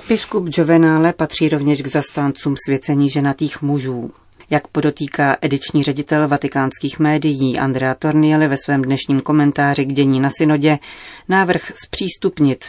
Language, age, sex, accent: Czech, 30-49, female, native